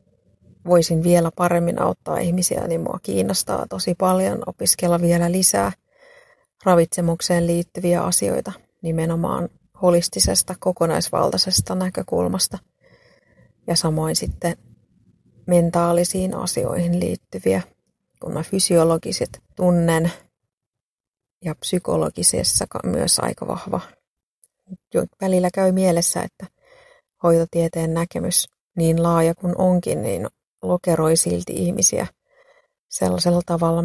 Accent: native